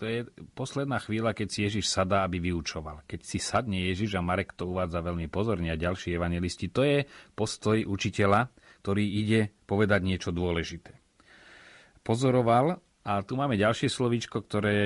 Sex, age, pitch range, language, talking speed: male, 40-59, 90-110 Hz, Slovak, 160 wpm